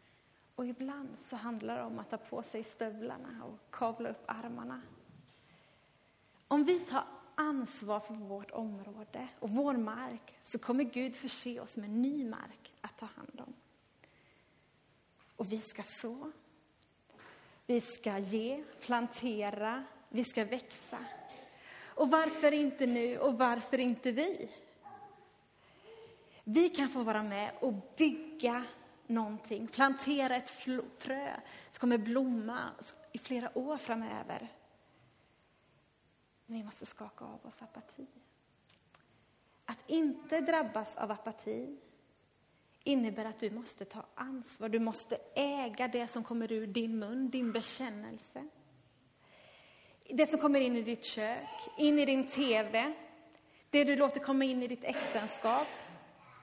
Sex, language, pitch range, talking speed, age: female, Swedish, 225-280 Hz, 130 wpm, 30-49